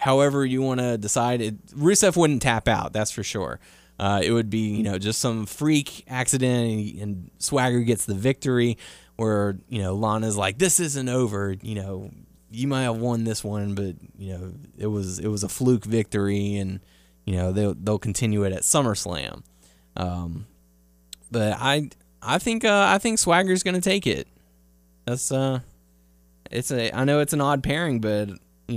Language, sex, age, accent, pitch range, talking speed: English, male, 20-39, American, 100-140 Hz, 185 wpm